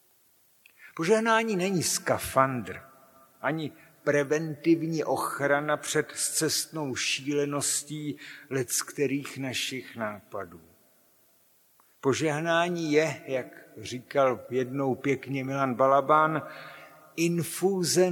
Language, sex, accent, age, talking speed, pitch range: Czech, male, native, 60-79, 75 wpm, 125-160 Hz